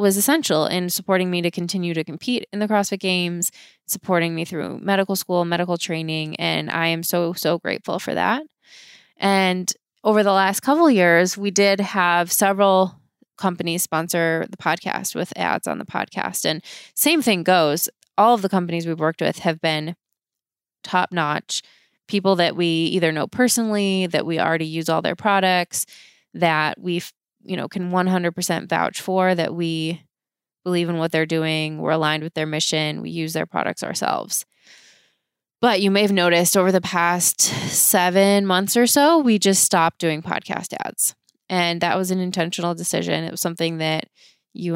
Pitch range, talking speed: 165-195 Hz, 175 wpm